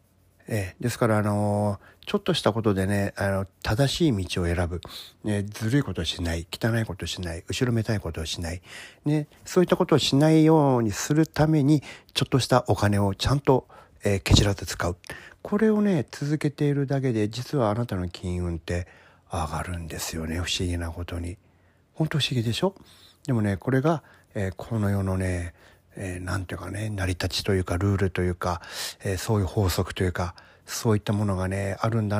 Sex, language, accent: male, Japanese, native